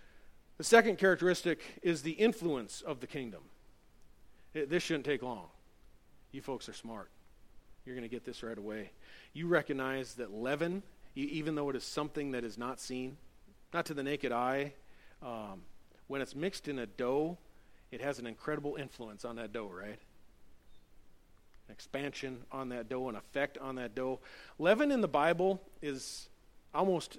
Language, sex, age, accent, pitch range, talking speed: English, male, 40-59, American, 120-150 Hz, 165 wpm